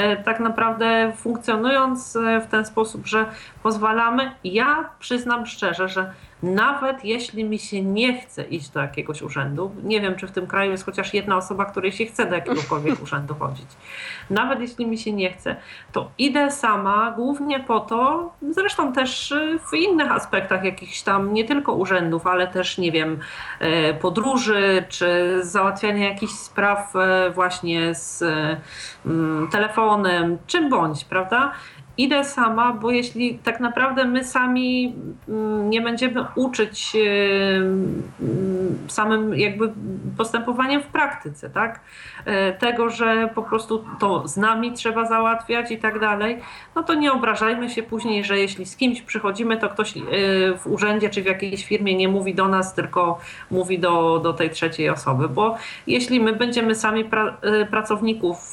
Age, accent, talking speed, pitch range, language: 40-59, native, 145 wpm, 190-235 Hz, Polish